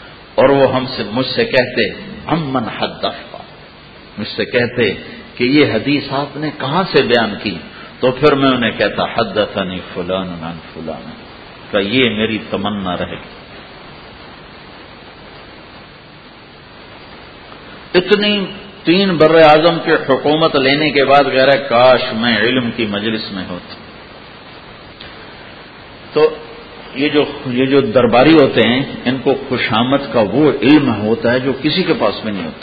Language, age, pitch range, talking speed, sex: English, 50-69, 105-145 Hz, 125 wpm, male